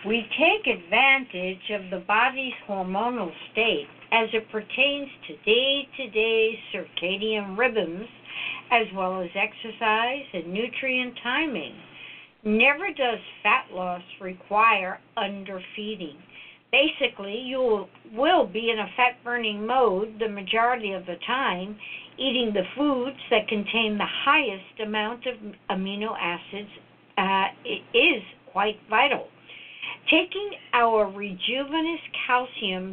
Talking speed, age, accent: 110 wpm, 60-79, American